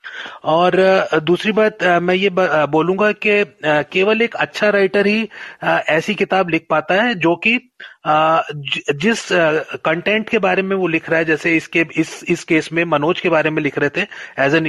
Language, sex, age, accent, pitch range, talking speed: Hindi, male, 30-49, native, 160-200 Hz, 175 wpm